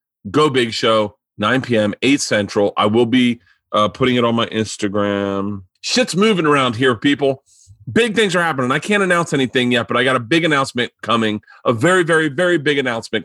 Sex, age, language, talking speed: male, 30-49, English, 195 wpm